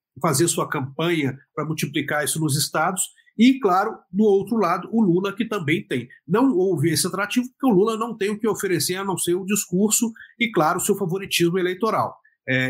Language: Portuguese